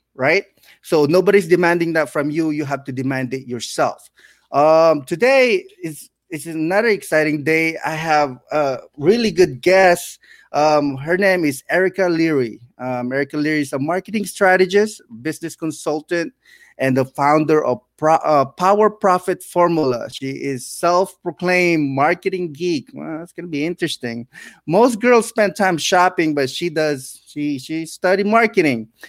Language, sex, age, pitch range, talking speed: English, male, 20-39, 150-185 Hz, 145 wpm